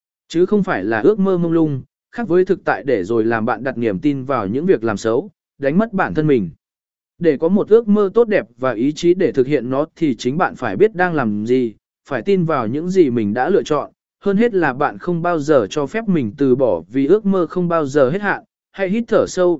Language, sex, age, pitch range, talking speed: Vietnamese, male, 20-39, 140-190 Hz, 255 wpm